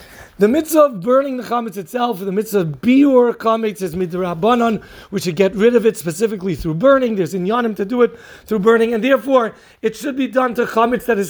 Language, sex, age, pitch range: English, male, 40-59, 200-240 Hz